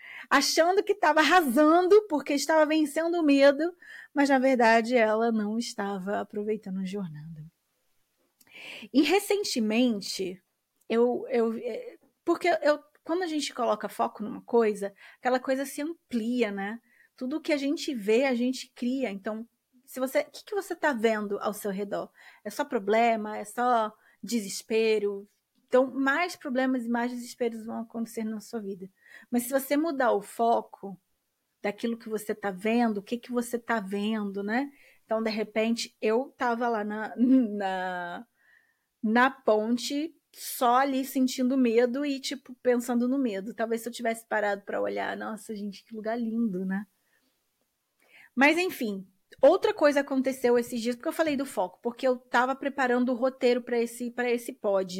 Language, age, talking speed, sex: Portuguese, 20-39, 155 wpm, female